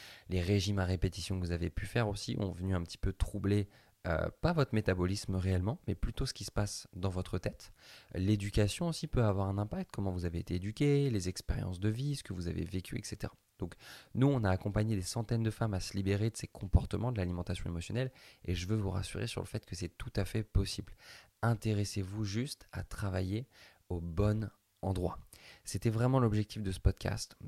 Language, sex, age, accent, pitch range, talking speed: French, male, 20-39, French, 95-110 Hz, 210 wpm